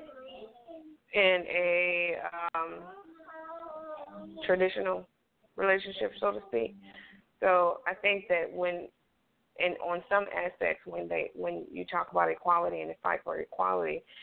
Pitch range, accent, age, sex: 170-205 Hz, American, 20-39, female